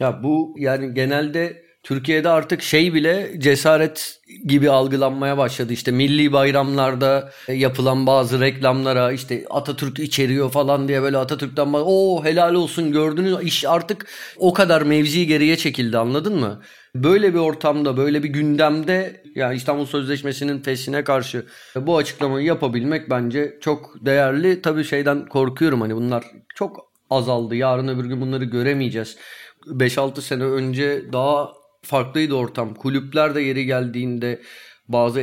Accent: native